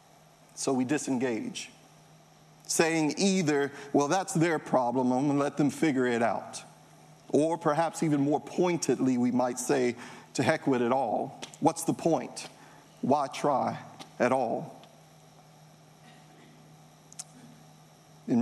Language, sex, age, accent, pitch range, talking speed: English, male, 50-69, American, 140-180 Hz, 125 wpm